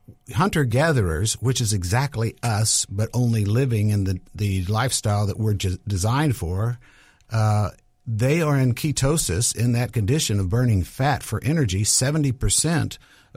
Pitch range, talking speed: 105-135 Hz, 140 wpm